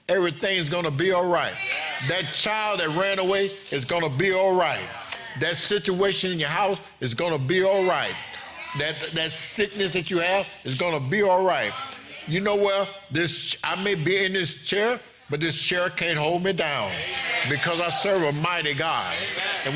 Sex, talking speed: male, 195 wpm